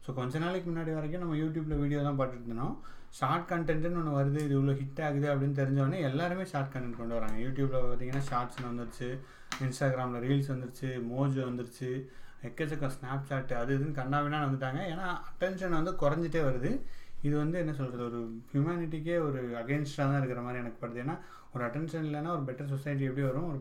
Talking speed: 180 wpm